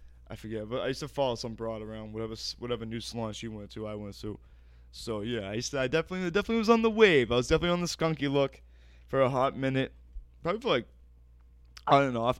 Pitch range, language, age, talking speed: 100-135 Hz, English, 20-39, 235 wpm